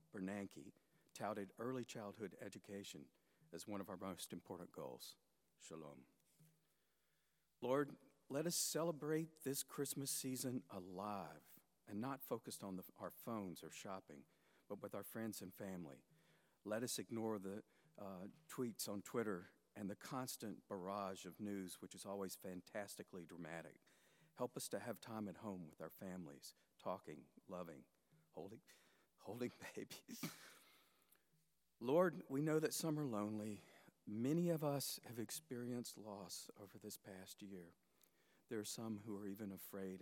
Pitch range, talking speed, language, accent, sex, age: 95-130 Hz, 140 wpm, English, American, male, 50-69